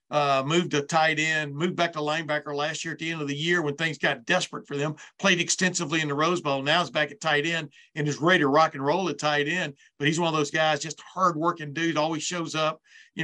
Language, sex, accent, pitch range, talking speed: English, male, American, 150-180 Hz, 265 wpm